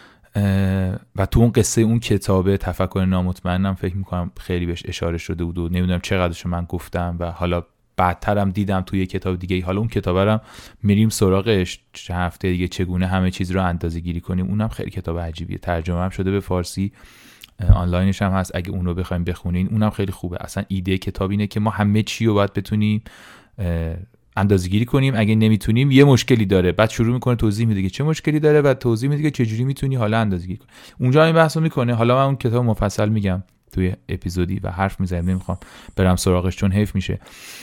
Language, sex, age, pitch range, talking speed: Persian, male, 30-49, 90-110 Hz, 190 wpm